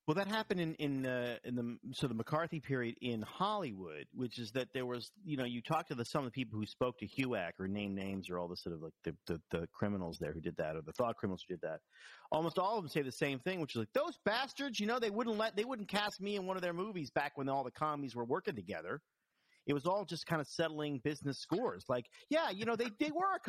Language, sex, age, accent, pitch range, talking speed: English, male, 40-59, American, 120-185 Hz, 275 wpm